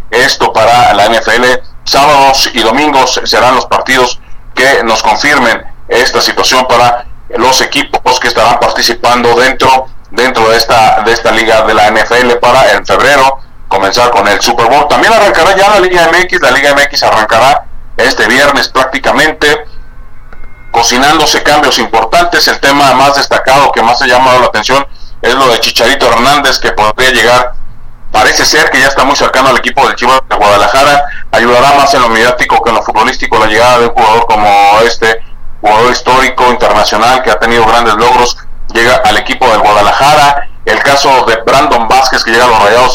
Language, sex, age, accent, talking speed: Spanish, male, 40-59, Mexican, 175 wpm